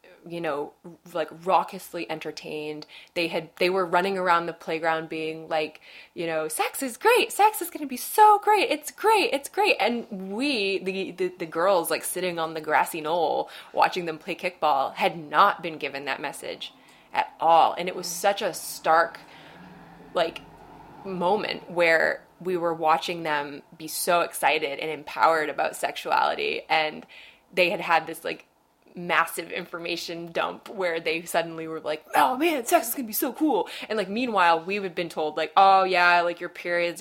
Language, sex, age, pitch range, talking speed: English, female, 20-39, 160-205 Hz, 185 wpm